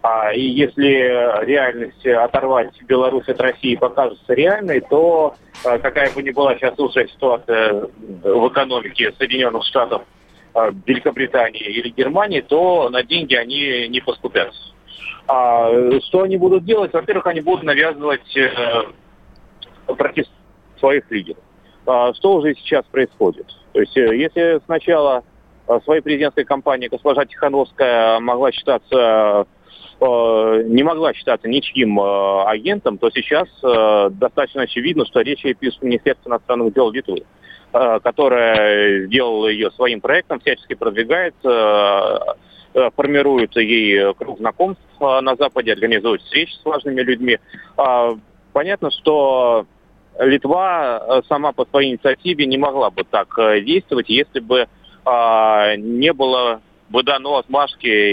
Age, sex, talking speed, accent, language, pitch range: 40-59, male, 115 wpm, native, Russian, 115-145 Hz